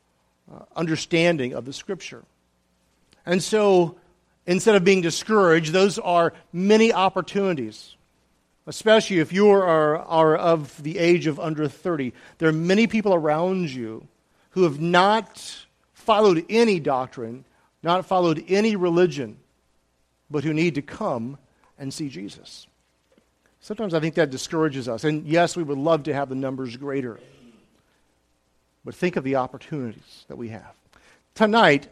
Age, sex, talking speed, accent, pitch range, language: 50-69, male, 140 wpm, American, 135-185 Hz, English